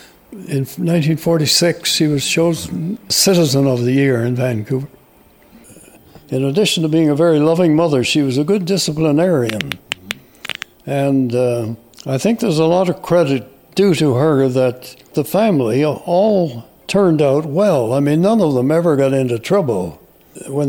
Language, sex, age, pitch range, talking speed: English, male, 60-79, 125-165 Hz, 155 wpm